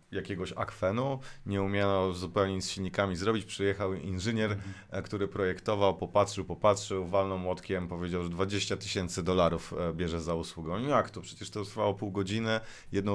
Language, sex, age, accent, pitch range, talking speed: Polish, male, 30-49, native, 100-125 Hz, 150 wpm